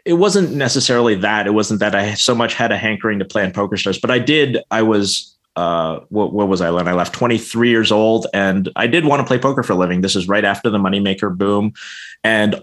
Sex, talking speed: male, 240 wpm